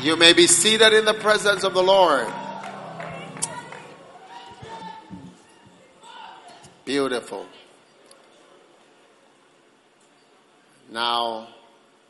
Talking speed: 60 wpm